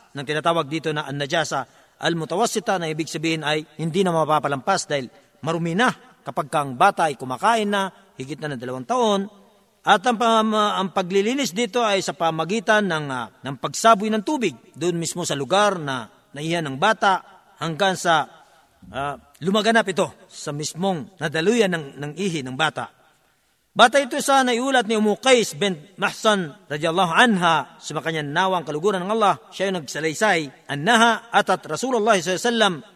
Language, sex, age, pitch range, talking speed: Filipino, male, 50-69, 155-210 Hz, 155 wpm